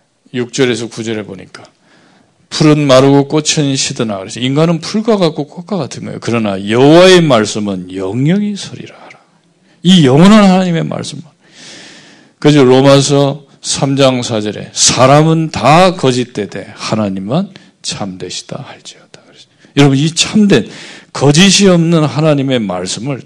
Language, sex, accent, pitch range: Korean, male, native, 120-185 Hz